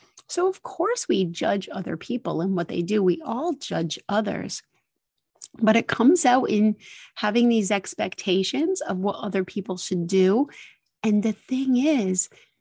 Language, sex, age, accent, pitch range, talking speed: English, female, 30-49, American, 190-260 Hz, 155 wpm